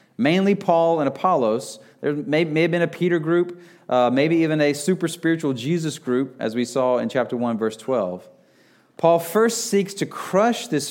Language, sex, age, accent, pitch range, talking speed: English, male, 40-59, American, 135-165 Hz, 185 wpm